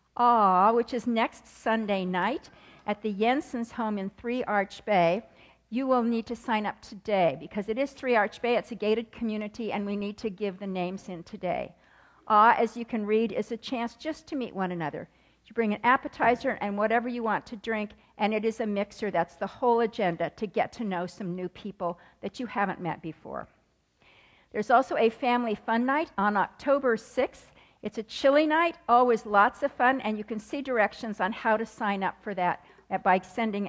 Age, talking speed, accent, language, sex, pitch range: 50-69, 210 wpm, American, English, female, 200-240 Hz